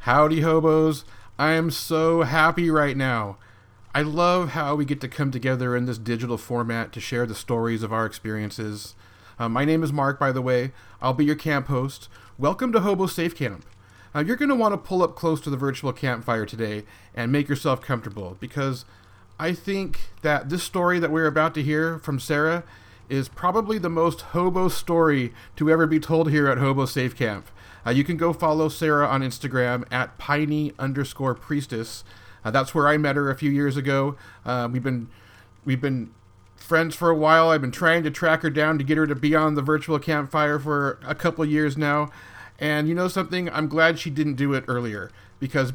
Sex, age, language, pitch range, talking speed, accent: male, 40-59, English, 120-160 Hz, 205 wpm, American